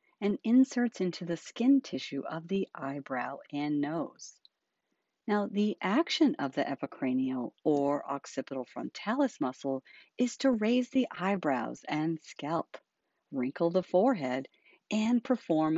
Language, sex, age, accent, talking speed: English, female, 50-69, American, 125 wpm